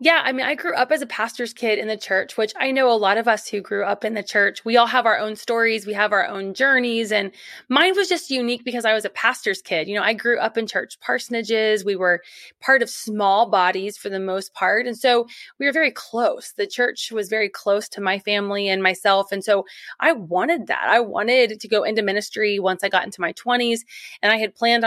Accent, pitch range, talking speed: American, 200-240 Hz, 250 wpm